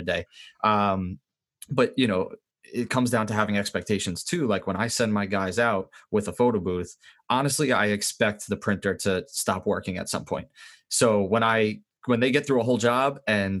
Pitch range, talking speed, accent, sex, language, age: 95-110 Hz, 205 wpm, American, male, English, 20-39